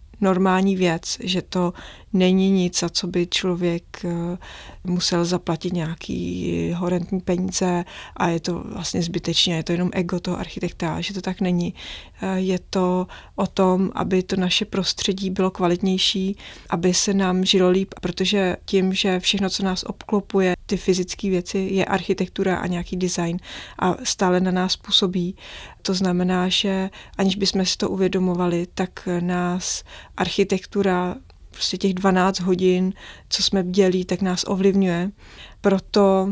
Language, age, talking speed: Czech, 30-49, 140 wpm